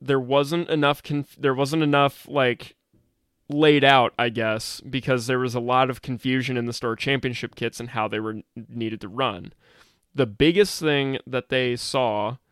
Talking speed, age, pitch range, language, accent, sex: 180 wpm, 20-39, 120-145 Hz, English, American, male